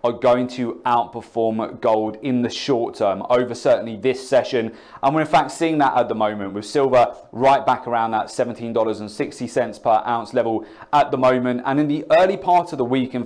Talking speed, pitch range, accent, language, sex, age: 200 wpm, 115-140 Hz, British, English, male, 30-49